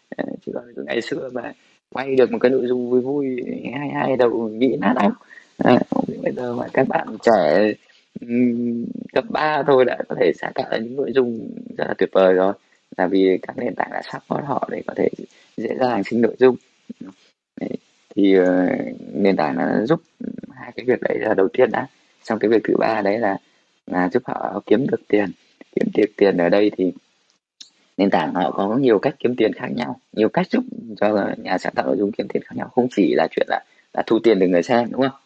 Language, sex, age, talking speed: Vietnamese, male, 20-39, 225 wpm